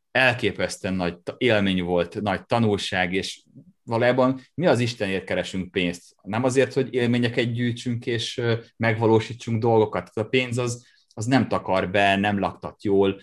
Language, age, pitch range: Hungarian, 30-49, 95-125 Hz